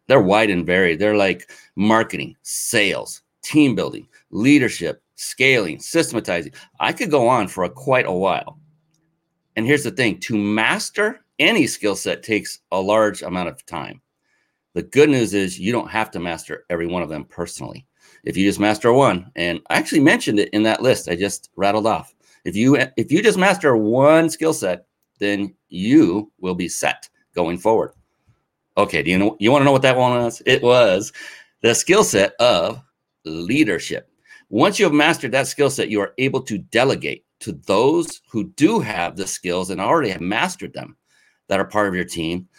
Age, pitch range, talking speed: 30-49, 95-140 Hz, 185 wpm